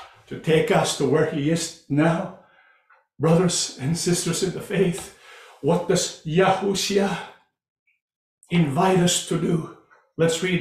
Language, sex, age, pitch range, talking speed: English, male, 50-69, 170-225 Hz, 130 wpm